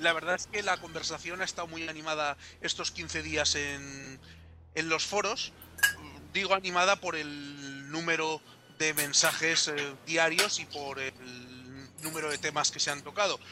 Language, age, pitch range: Spanish, 30-49, 135-165 Hz